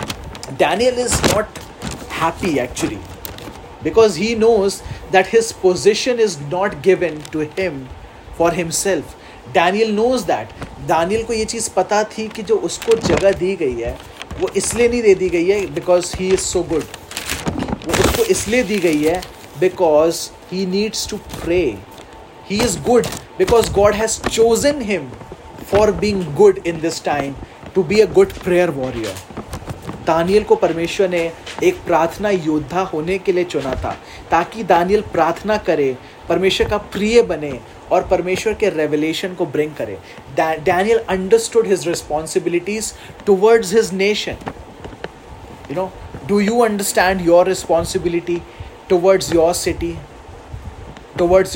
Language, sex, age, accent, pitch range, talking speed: Hindi, male, 30-49, native, 165-210 Hz, 140 wpm